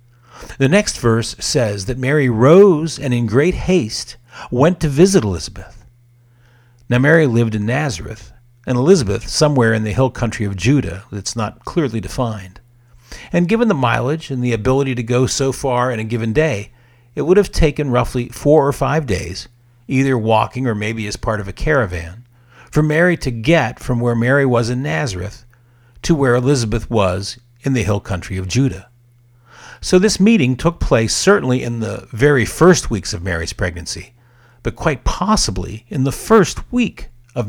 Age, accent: 50-69, American